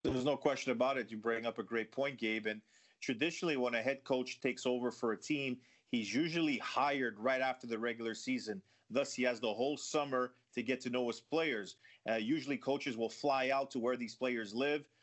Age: 30-49